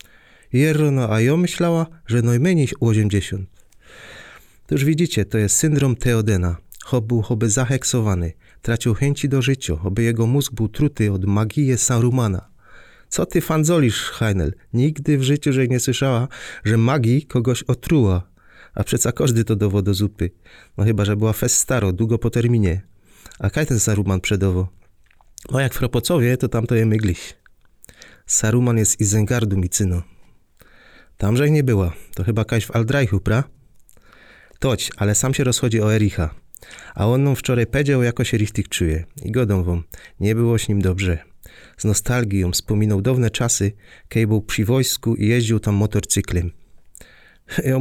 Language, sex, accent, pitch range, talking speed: Polish, male, native, 100-125 Hz, 160 wpm